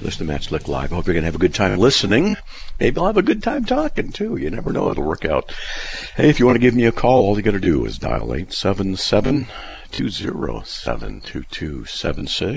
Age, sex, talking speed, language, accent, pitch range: 50-69, male, 210 wpm, English, American, 80-120 Hz